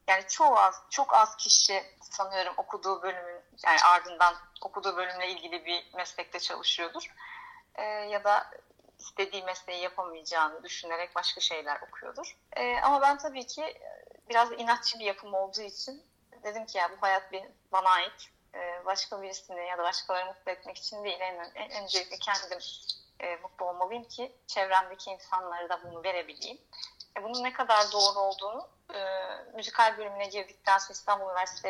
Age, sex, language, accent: 30-49, female, Turkish, native